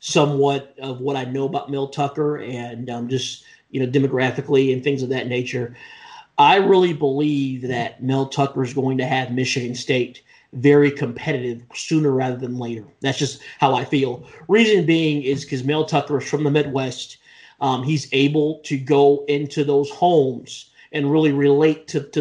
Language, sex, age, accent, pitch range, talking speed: English, male, 40-59, American, 135-155 Hz, 175 wpm